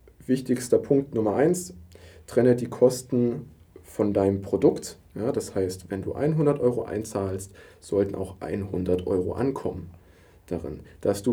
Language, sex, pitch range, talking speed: German, male, 95-125 Hz, 140 wpm